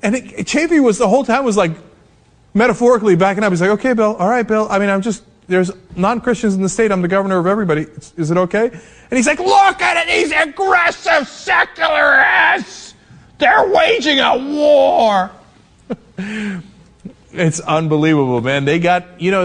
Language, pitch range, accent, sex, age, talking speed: English, 140-210 Hz, American, male, 30-49, 180 wpm